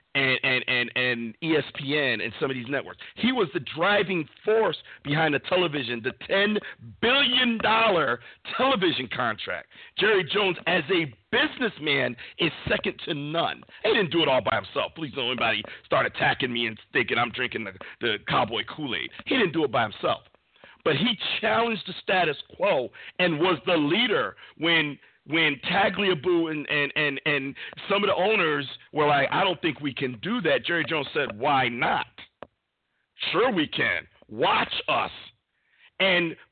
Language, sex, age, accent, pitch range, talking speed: English, male, 50-69, American, 135-195 Hz, 160 wpm